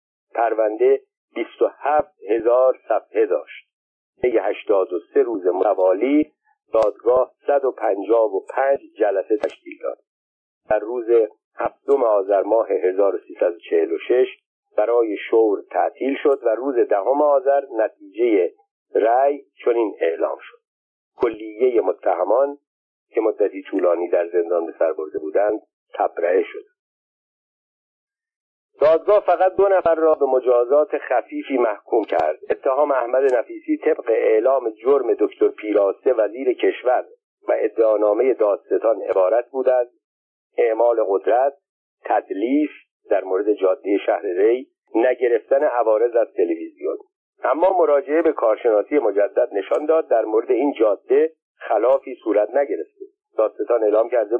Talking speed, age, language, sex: 110 wpm, 50-69, Persian, male